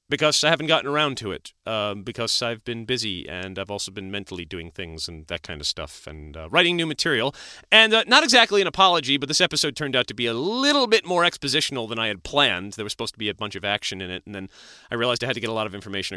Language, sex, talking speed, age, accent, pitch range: English, male, 275 wpm, 30-49, American, 100-155 Hz